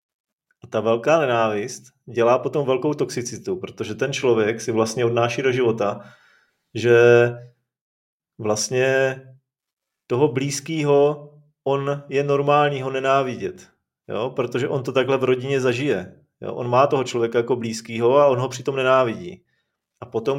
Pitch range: 115-140 Hz